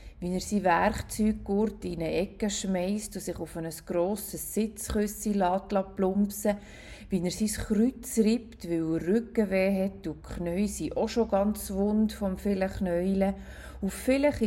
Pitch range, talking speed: 165-210 Hz, 150 wpm